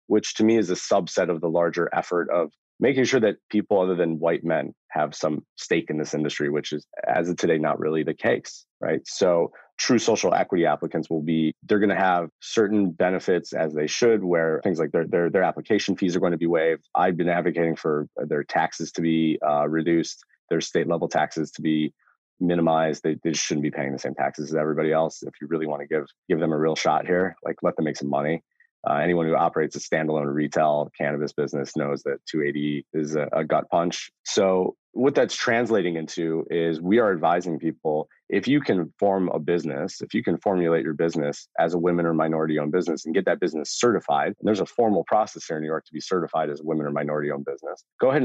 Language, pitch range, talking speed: English, 75-85 Hz, 225 wpm